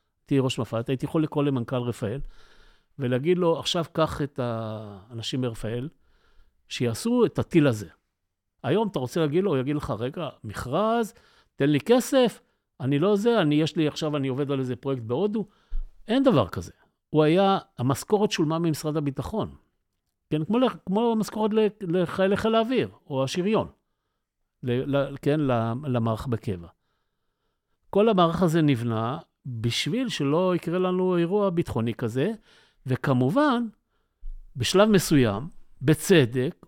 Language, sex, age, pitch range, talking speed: Hebrew, male, 50-69, 130-190 Hz, 130 wpm